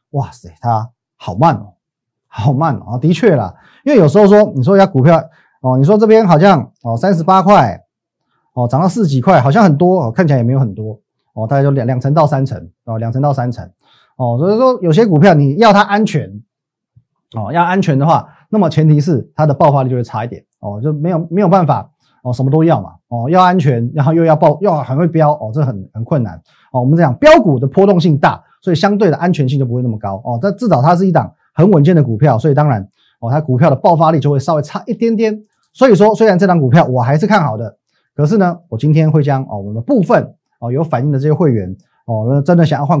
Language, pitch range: Chinese, 120-175 Hz